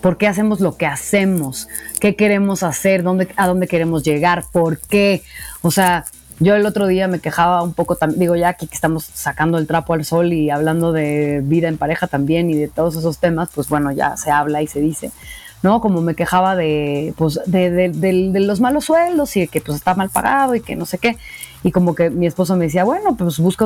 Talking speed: 230 wpm